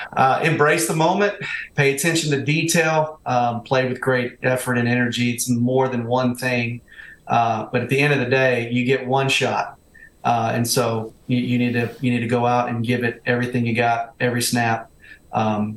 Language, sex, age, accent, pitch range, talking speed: English, male, 40-59, American, 115-135 Hz, 200 wpm